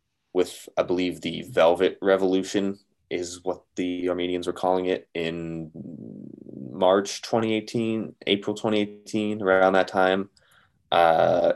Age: 20-39